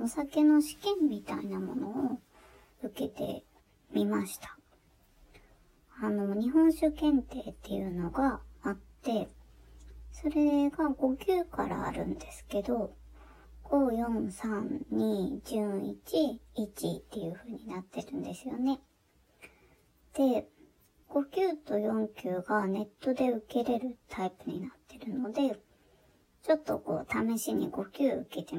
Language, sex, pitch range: Japanese, male, 205-290 Hz